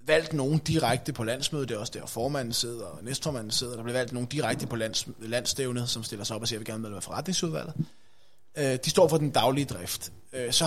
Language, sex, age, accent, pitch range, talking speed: Danish, male, 20-39, native, 115-140 Hz, 230 wpm